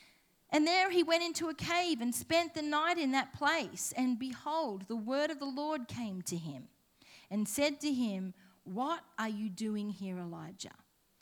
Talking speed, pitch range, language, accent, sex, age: 180 wpm, 240-330 Hz, English, Australian, female, 40-59